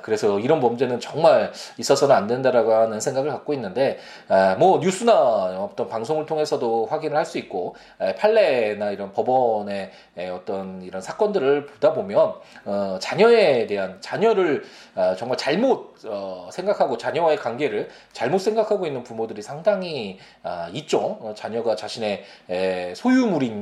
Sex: male